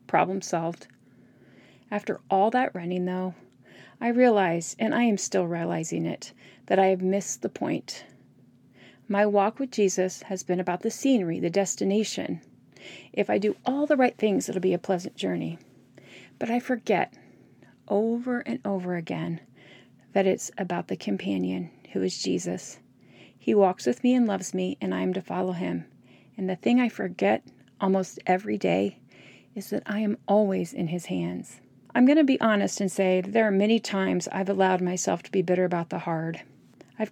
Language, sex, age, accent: English, female, 40-59, American